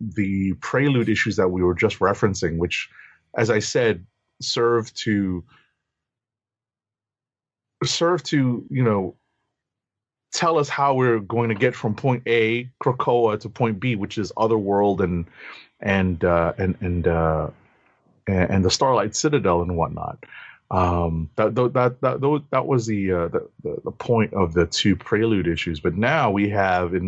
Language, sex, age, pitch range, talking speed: English, male, 30-49, 95-120 Hz, 155 wpm